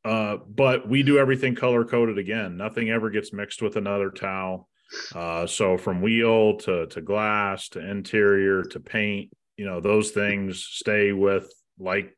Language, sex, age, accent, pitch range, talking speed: English, male, 30-49, American, 95-115 Hz, 160 wpm